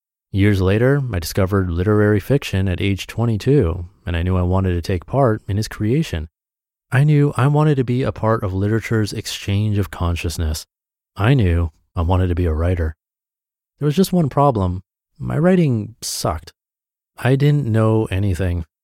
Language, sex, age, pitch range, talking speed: English, male, 30-49, 90-110 Hz, 170 wpm